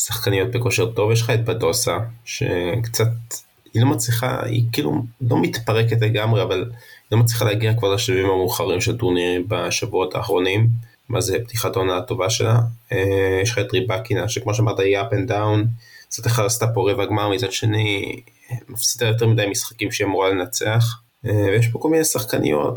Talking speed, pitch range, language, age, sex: 170 wpm, 100-120 Hz, Hebrew, 20-39, male